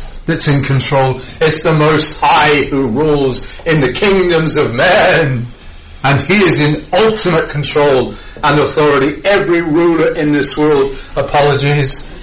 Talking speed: 135 wpm